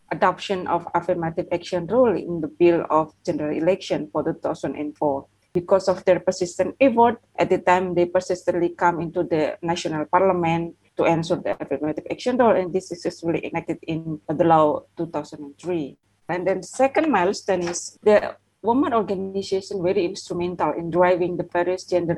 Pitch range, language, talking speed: 165-190 Hz, English, 160 wpm